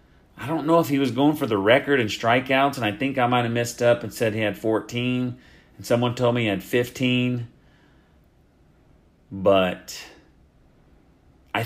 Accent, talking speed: American, 175 wpm